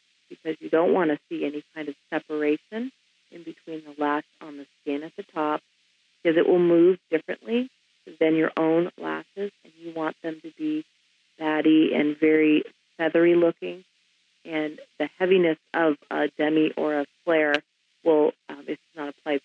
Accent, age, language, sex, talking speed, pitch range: American, 40-59, English, female, 170 wpm, 145-165 Hz